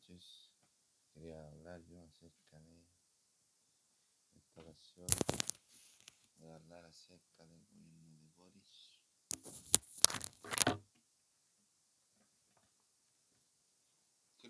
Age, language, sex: 60-79, Spanish, male